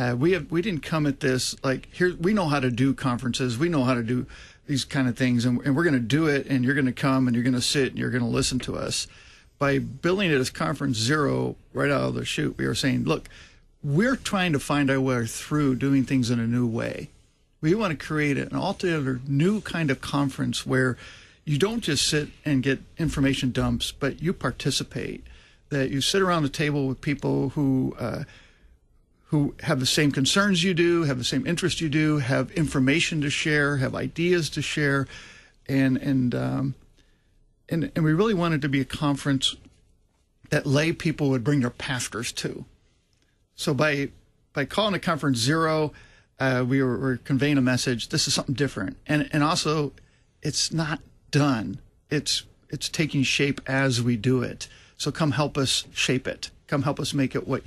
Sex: male